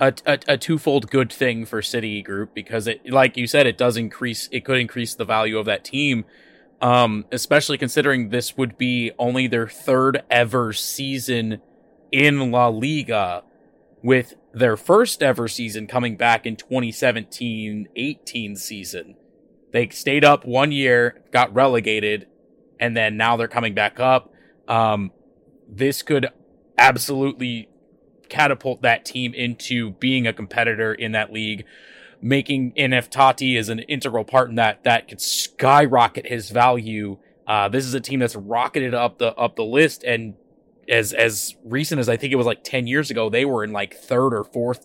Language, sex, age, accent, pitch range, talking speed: English, male, 20-39, American, 110-130 Hz, 165 wpm